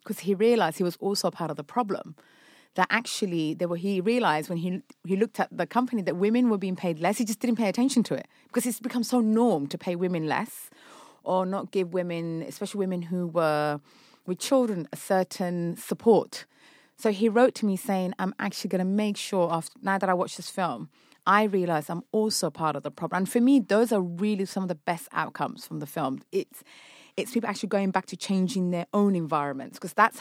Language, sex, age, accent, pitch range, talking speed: English, female, 30-49, British, 175-215 Hz, 225 wpm